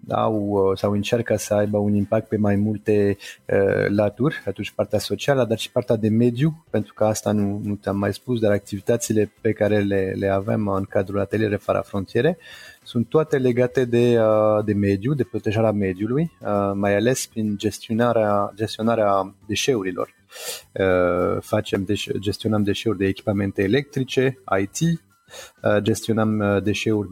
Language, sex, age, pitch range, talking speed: Romanian, male, 30-49, 100-120 Hz, 150 wpm